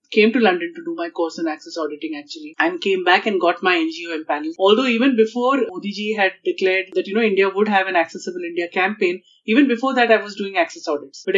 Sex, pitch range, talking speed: female, 185-250 Hz, 235 wpm